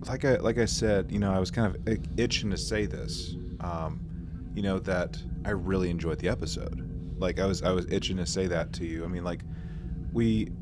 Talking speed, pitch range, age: 220 wpm, 85-95 Hz, 20-39